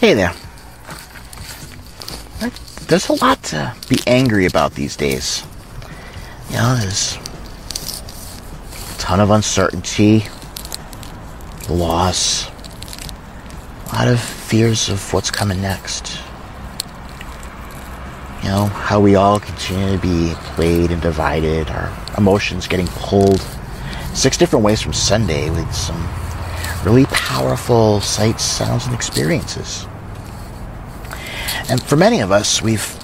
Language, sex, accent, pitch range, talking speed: English, male, American, 85-110 Hz, 110 wpm